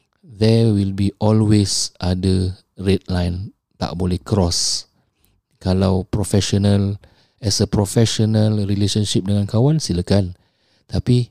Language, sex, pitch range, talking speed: English, male, 95-105 Hz, 105 wpm